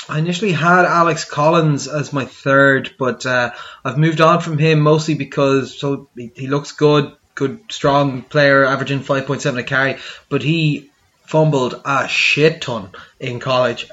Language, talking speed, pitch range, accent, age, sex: English, 160 wpm, 130-155 Hz, Irish, 20-39, male